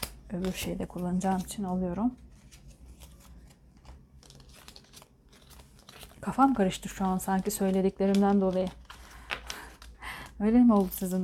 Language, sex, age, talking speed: Turkish, female, 30-49, 85 wpm